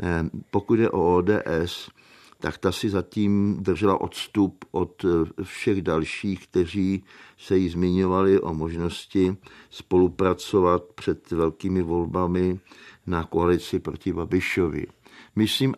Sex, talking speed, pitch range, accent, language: male, 105 wpm, 90-105 Hz, native, Czech